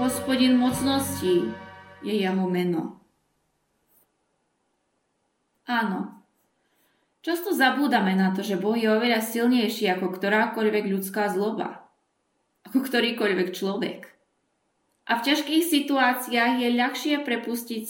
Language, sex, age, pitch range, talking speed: Slovak, female, 20-39, 210-255 Hz, 95 wpm